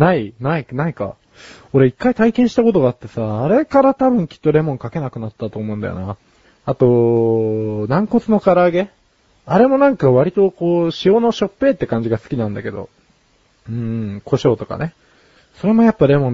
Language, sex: Japanese, male